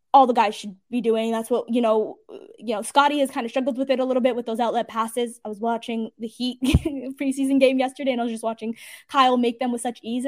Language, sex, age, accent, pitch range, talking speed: English, female, 10-29, American, 230-280 Hz, 265 wpm